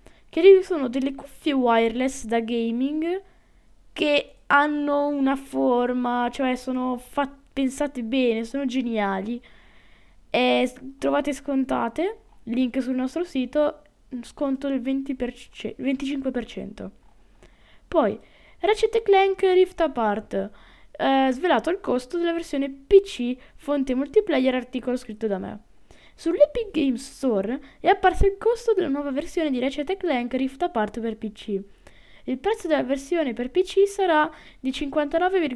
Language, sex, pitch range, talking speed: Italian, female, 245-310 Hz, 115 wpm